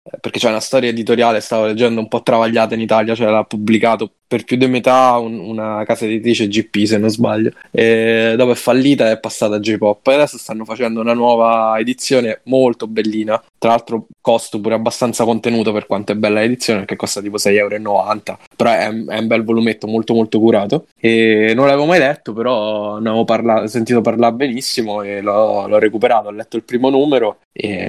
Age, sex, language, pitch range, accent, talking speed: 10-29, male, Italian, 110-120 Hz, native, 200 wpm